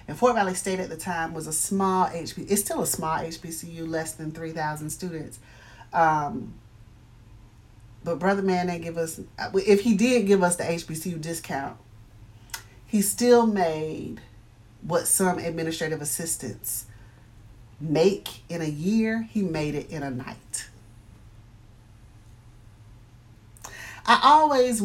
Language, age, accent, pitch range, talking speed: English, 40-59, American, 120-190 Hz, 135 wpm